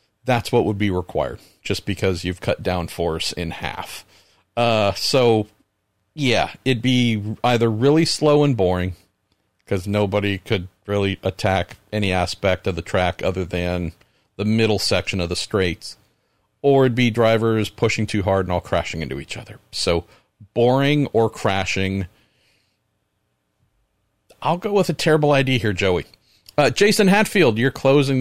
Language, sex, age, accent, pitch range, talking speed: English, male, 40-59, American, 95-125 Hz, 150 wpm